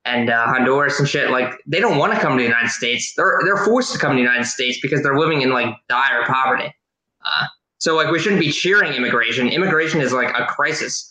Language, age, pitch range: English, 20-39, 125-160 Hz